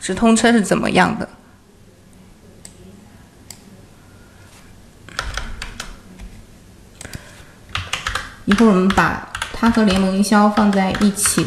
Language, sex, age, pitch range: Chinese, female, 20-39, 175-230 Hz